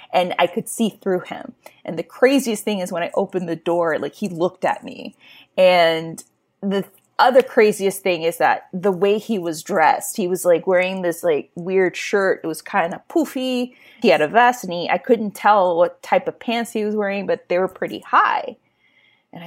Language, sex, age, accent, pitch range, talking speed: English, female, 20-39, American, 175-210 Hz, 210 wpm